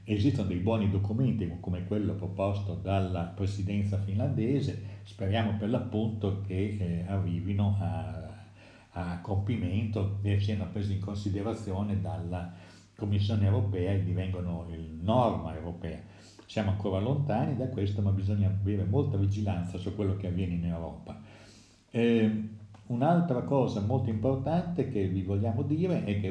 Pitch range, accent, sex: 95-110 Hz, native, male